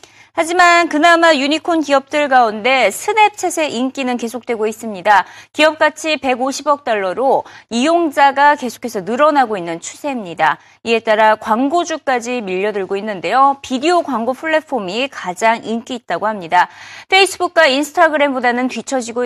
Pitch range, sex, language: 230-325 Hz, female, Korean